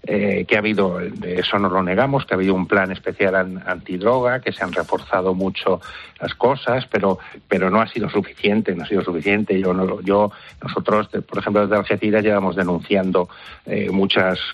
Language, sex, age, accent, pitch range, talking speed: Spanish, male, 60-79, Spanish, 95-105 Hz, 185 wpm